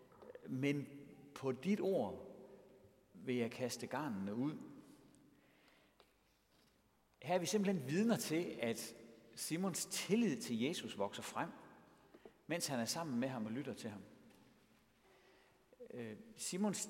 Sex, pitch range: male, 135-200 Hz